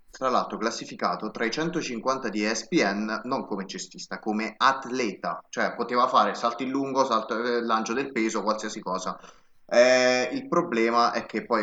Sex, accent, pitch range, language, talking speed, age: male, native, 105-135 Hz, Italian, 155 wpm, 20-39